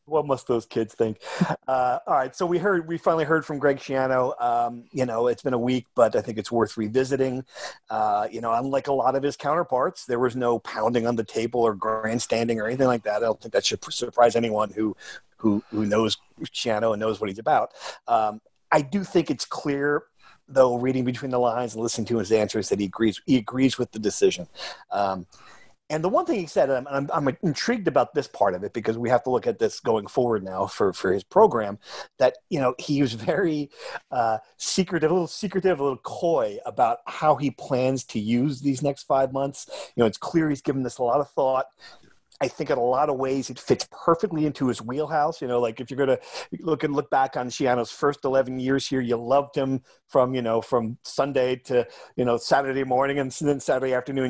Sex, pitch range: male, 120-145 Hz